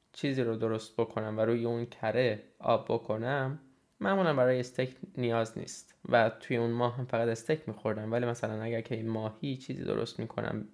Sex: male